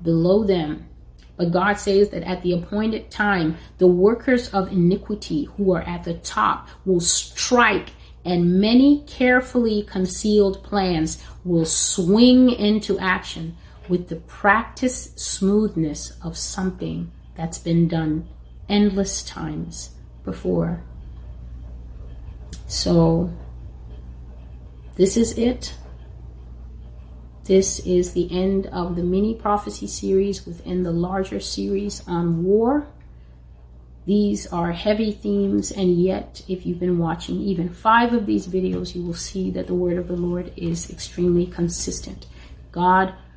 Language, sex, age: English, female, 30-49